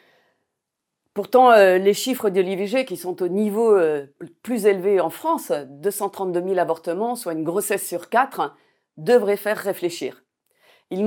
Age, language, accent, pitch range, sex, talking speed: 40-59, French, French, 185-240 Hz, female, 140 wpm